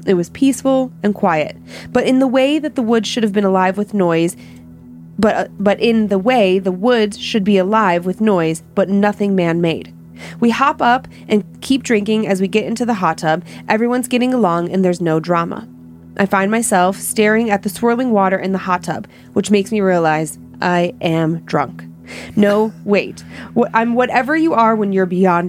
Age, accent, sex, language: 30-49, American, female, English